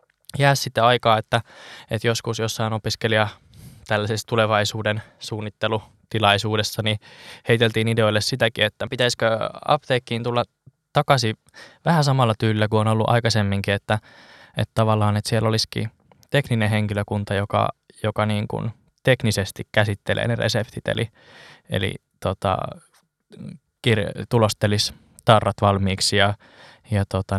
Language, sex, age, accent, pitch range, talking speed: Finnish, male, 20-39, native, 100-115 Hz, 115 wpm